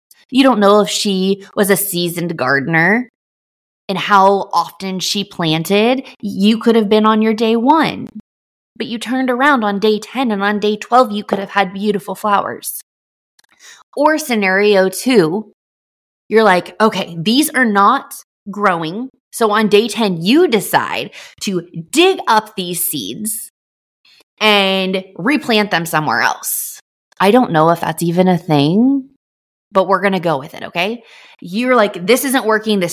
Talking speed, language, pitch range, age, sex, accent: 160 wpm, English, 185-230 Hz, 20-39, female, American